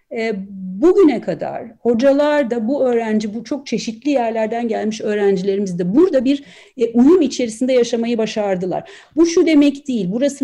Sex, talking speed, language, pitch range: female, 140 wpm, Turkish, 230-300 Hz